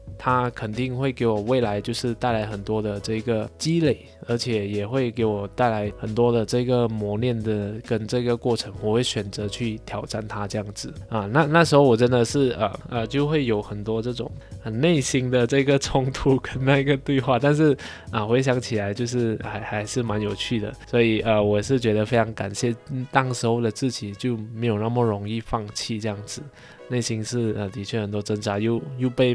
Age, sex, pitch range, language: 20-39, male, 110-135 Hz, Chinese